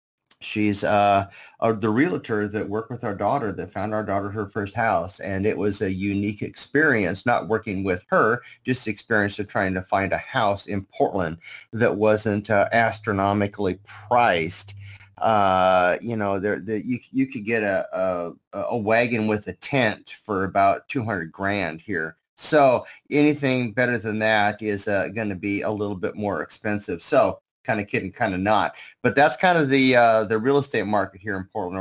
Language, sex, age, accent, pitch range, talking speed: English, male, 30-49, American, 95-110 Hz, 180 wpm